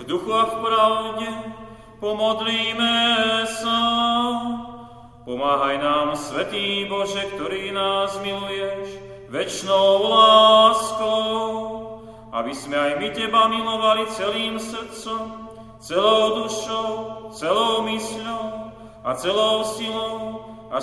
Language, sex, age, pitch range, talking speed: Slovak, male, 40-59, 195-225 Hz, 90 wpm